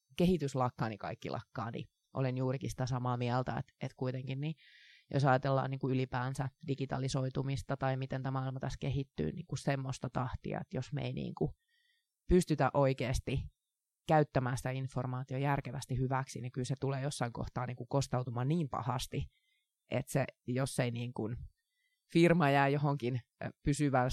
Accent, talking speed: native, 160 wpm